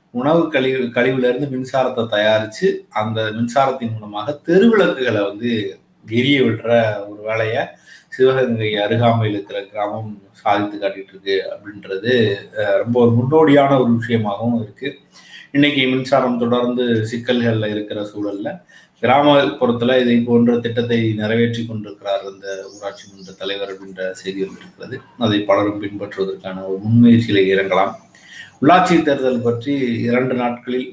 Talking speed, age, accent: 115 wpm, 30-49, native